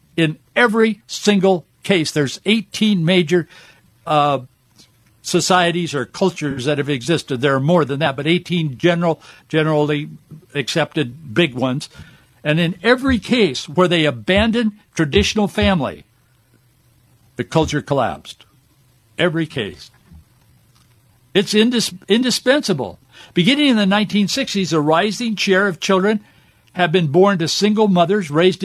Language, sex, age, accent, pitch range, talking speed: English, male, 60-79, American, 140-190 Hz, 125 wpm